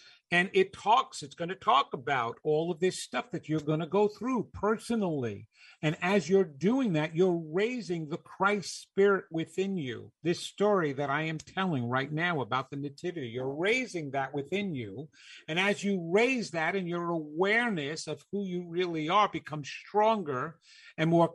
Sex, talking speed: male, 180 wpm